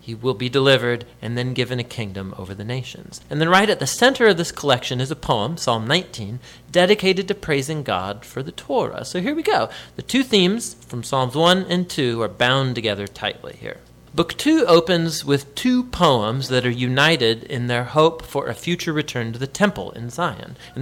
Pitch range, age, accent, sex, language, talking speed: 115-165 Hz, 40-59, American, male, English, 210 wpm